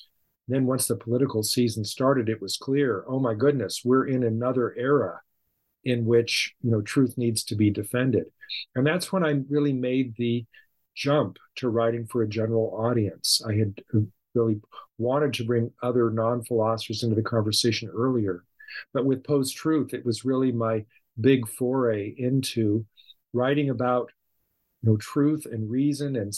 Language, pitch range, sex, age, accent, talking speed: English, 115-135 Hz, male, 50-69, American, 155 wpm